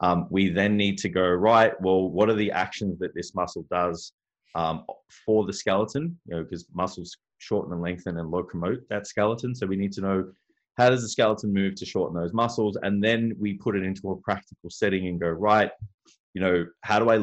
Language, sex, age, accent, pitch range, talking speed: English, male, 20-39, Australian, 90-110 Hz, 215 wpm